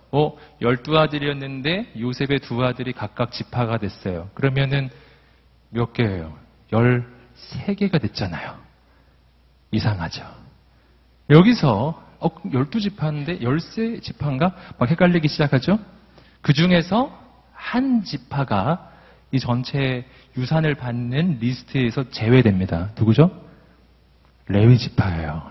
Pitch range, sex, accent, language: 110-155 Hz, male, native, Korean